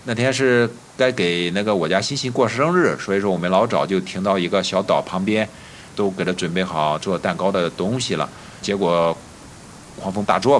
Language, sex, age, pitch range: Chinese, male, 50-69, 95-125 Hz